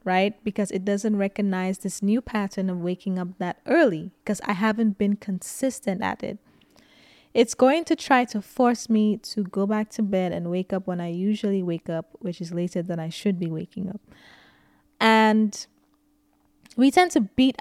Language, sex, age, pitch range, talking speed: English, female, 20-39, 190-225 Hz, 185 wpm